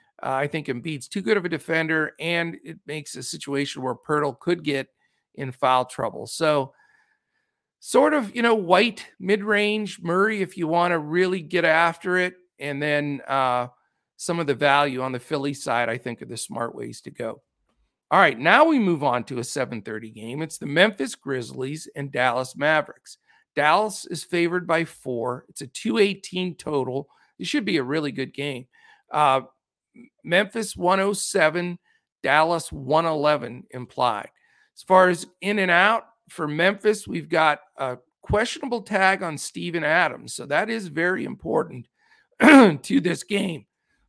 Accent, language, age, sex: American, English, 50-69, male